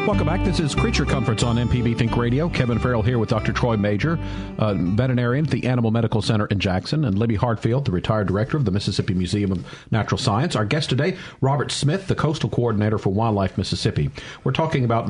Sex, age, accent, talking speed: male, 50-69, American, 210 wpm